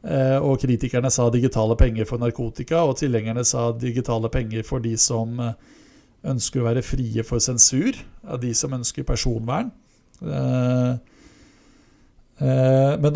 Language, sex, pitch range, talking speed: Swedish, male, 115-135 Hz, 115 wpm